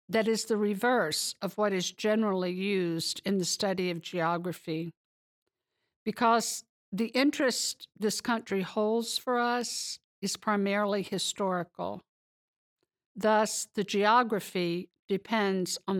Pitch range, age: 185-225 Hz, 60-79